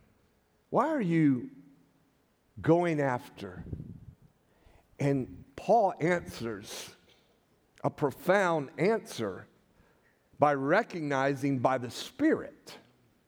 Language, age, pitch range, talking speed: English, 50-69, 135-185 Hz, 70 wpm